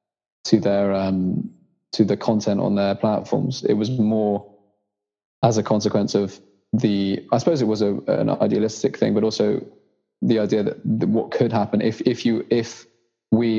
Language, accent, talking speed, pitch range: English, British, 170 wpm, 100-110 Hz